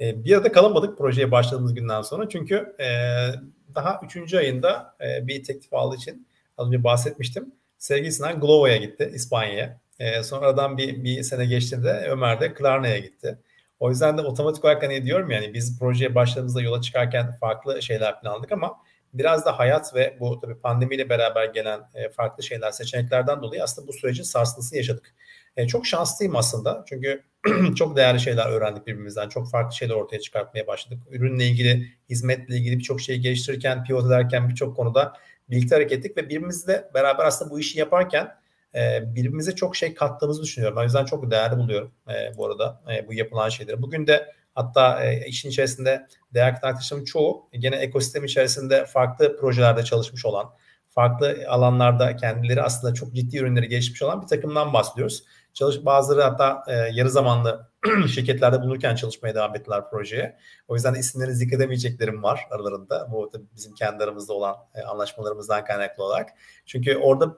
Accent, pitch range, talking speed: native, 120-140 Hz, 155 wpm